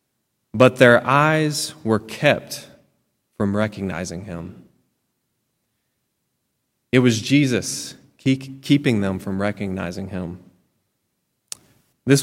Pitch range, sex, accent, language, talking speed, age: 100-125 Hz, male, American, English, 85 wpm, 20-39